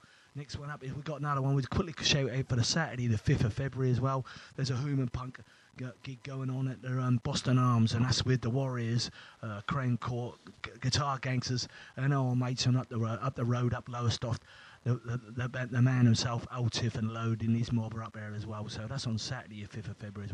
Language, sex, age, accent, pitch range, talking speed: English, male, 30-49, British, 115-140 Hz, 250 wpm